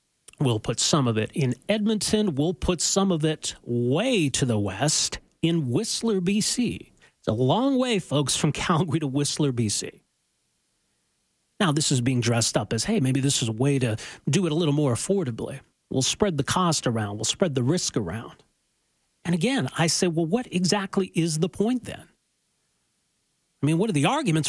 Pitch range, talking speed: 135-180 Hz, 185 wpm